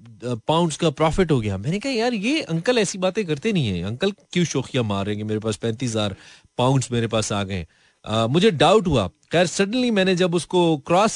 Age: 30-49